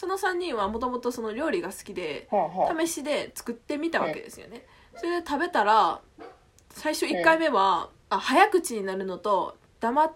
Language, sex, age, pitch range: Japanese, female, 20-39, 215-340 Hz